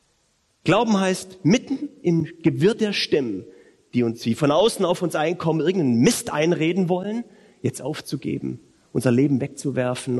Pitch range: 140-180 Hz